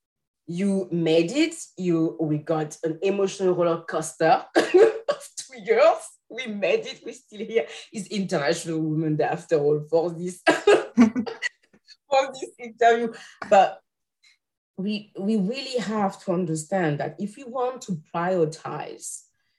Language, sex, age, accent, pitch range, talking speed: English, female, 30-49, French, 150-190 Hz, 130 wpm